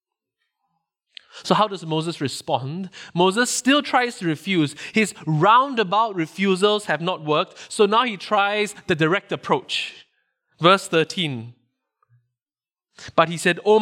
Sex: male